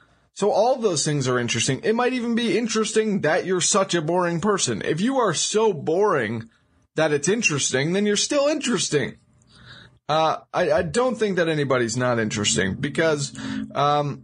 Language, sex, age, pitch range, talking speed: English, male, 20-39, 140-190 Hz, 170 wpm